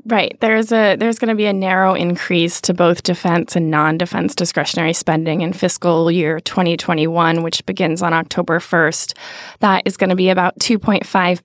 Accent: American